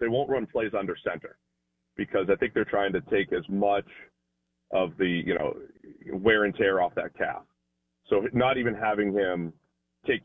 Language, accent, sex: English, American, male